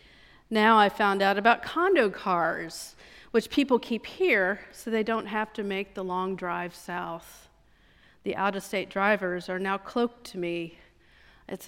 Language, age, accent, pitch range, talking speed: English, 50-69, American, 195-245 Hz, 155 wpm